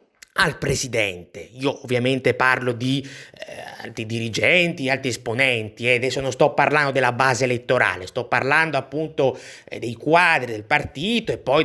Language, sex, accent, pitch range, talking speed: Italian, male, native, 135-190 Hz, 155 wpm